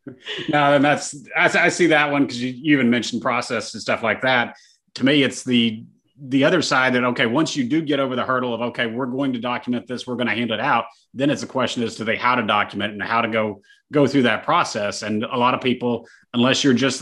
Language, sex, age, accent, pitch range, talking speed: English, male, 30-49, American, 115-135 Hz, 255 wpm